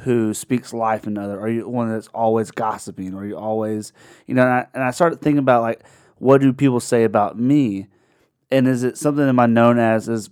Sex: male